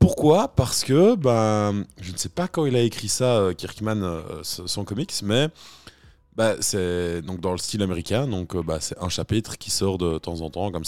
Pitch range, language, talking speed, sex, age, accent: 90-110 Hz, French, 200 wpm, male, 20-39, French